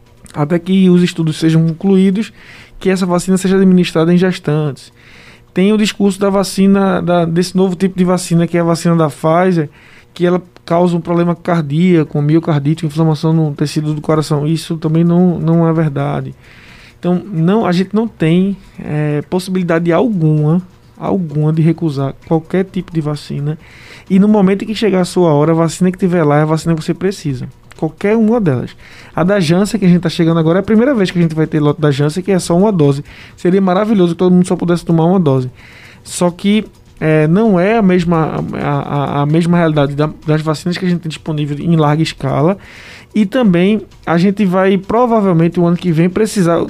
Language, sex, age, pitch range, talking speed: Portuguese, male, 20-39, 155-185 Hz, 200 wpm